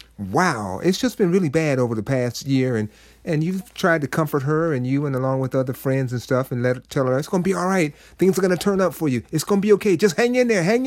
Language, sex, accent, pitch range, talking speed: English, male, American, 135-210 Hz, 305 wpm